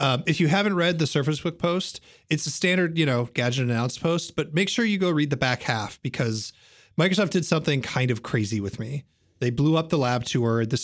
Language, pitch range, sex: English, 115-145 Hz, male